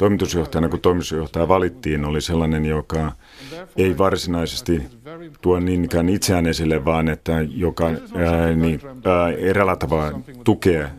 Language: Finnish